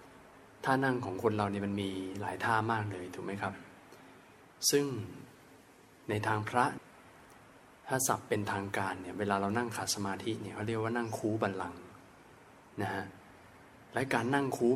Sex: male